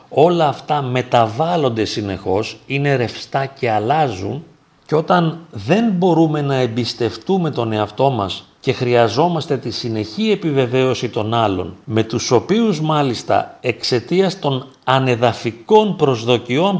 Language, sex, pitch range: Greek, male, 110-150 Hz